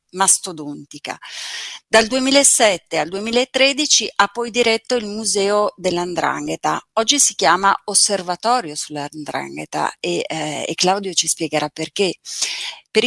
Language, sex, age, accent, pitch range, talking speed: Italian, female, 30-49, native, 165-215 Hz, 110 wpm